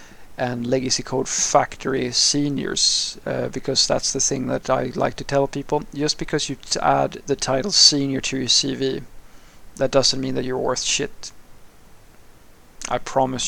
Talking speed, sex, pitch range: 155 wpm, male, 125-135 Hz